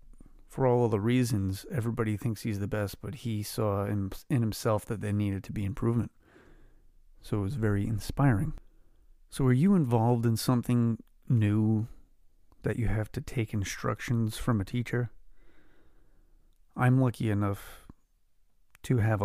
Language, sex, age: English, male, 30-49